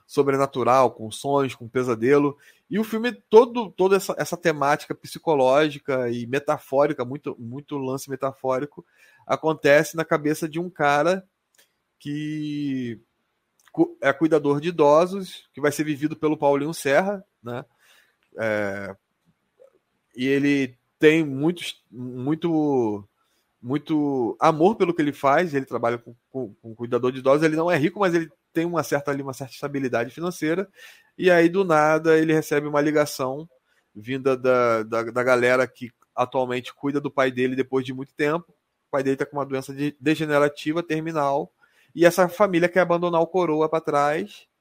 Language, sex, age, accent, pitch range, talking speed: Portuguese, male, 20-39, Brazilian, 130-160 Hz, 155 wpm